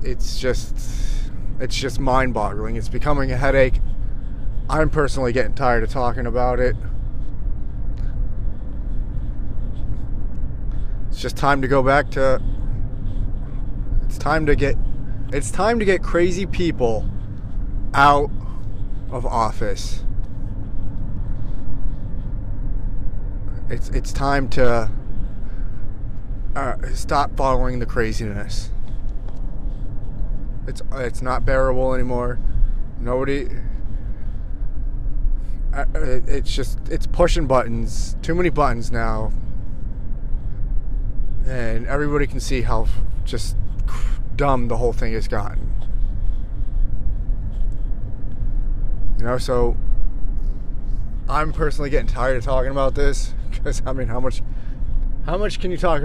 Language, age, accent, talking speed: English, 30-49, American, 100 wpm